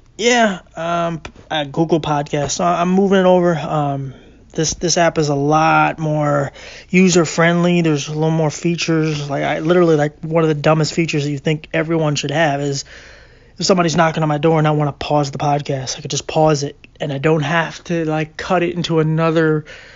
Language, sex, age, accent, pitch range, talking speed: English, male, 20-39, American, 145-170 Hz, 210 wpm